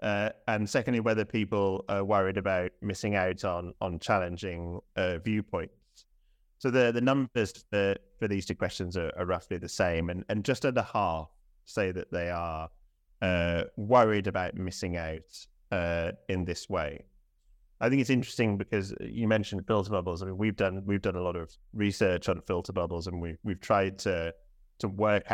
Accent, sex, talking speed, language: British, male, 180 wpm, English